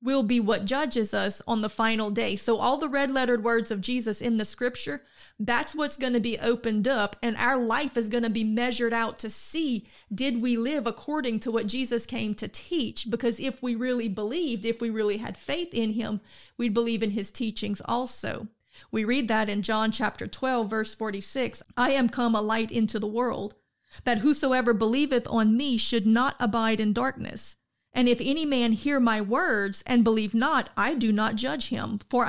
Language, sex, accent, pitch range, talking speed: English, female, American, 220-260 Hz, 200 wpm